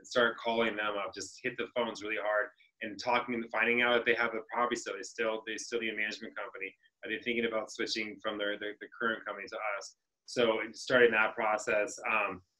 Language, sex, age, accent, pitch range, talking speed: English, male, 20-39, American, 110-120 Hz, 230 wpm